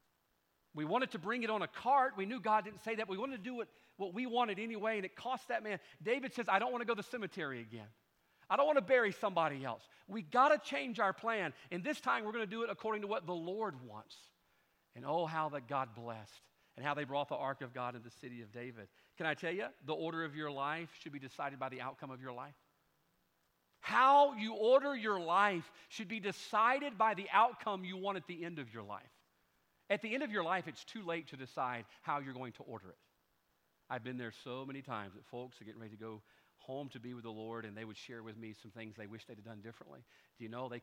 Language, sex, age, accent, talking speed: English, male, 40-59, American, 255 wpm